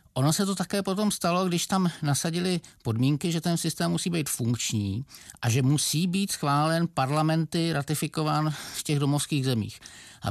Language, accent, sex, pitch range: Czech, native, male, 115-140 Hz